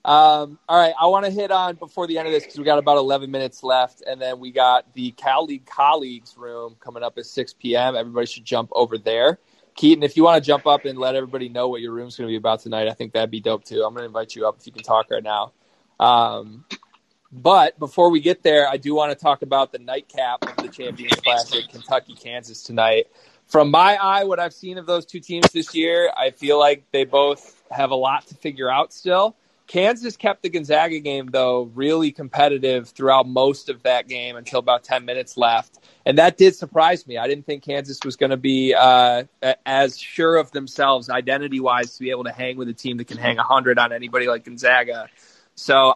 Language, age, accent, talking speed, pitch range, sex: English, 20-39, American, 225 wpm, 125-165 Hz, male